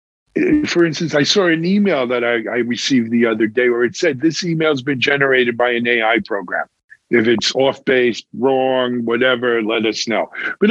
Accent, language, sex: American, English, male